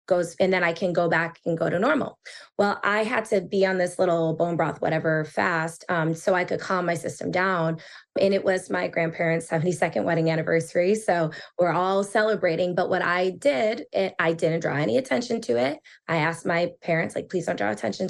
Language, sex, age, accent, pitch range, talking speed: English, female, 20-39, American, 175-220 Hz, 210 wpm